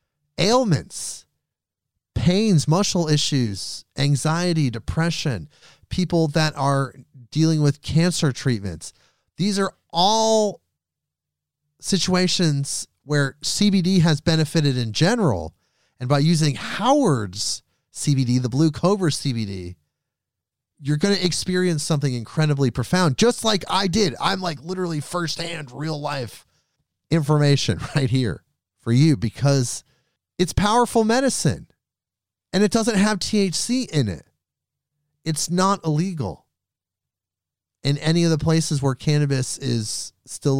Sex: male